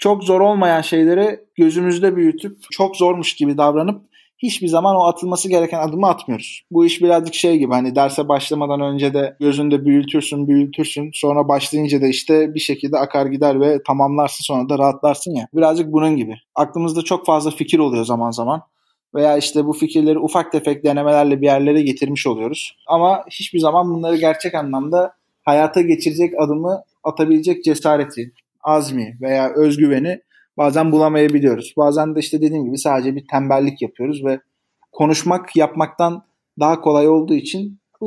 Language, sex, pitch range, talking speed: Turkish, male, 140-165 Hz, 155 wpm